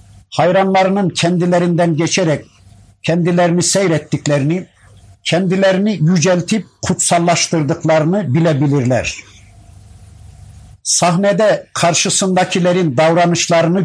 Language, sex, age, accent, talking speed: Turkish, male, 60-79, native, 50 wpm